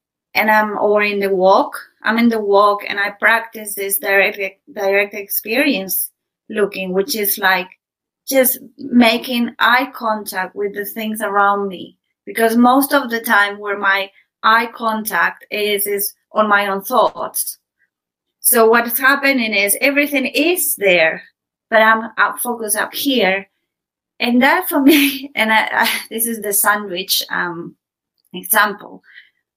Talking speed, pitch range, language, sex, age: 145 wpm, 200-240 Hz, English, female, 30-49